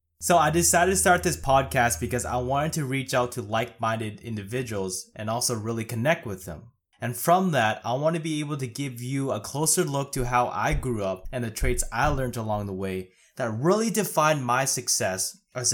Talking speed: 210 wpm